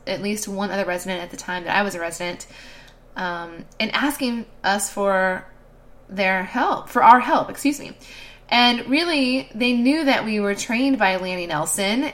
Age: 20-39